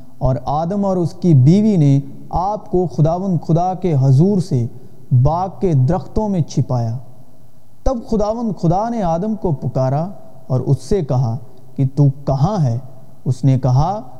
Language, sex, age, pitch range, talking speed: Urdu, male, 40-59, 130-190 Hz, 155 wpm